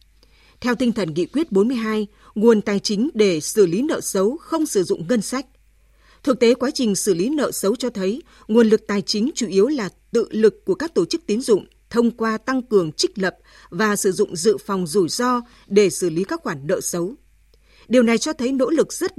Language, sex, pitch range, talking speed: Vietnamese, female, 195-255 Hz, 220 wpm